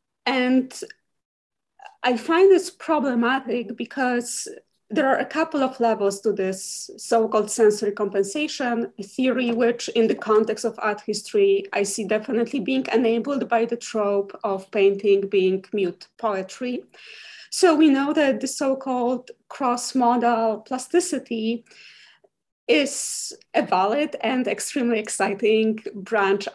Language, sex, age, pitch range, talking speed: English, female, 30-49, 215-265 Hz, 125 wpm